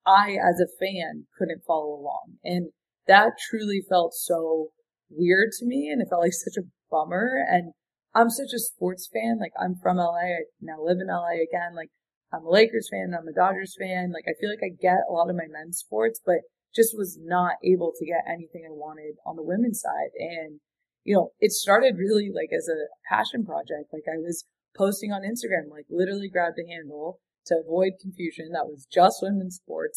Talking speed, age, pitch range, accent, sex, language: 205 wpm, 20-39, 165-205 Hz, American, female, English